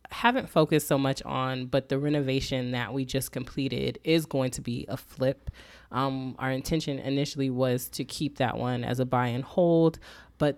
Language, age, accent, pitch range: English, 20-39, American, 125-145 Hz